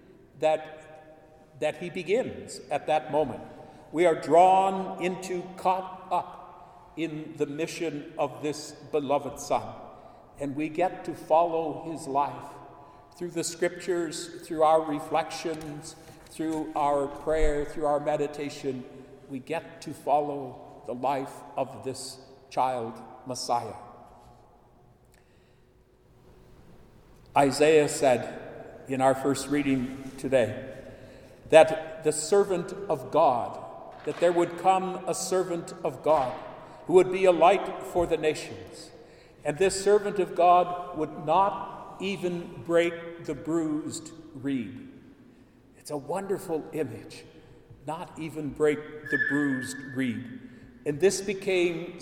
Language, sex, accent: English, male, American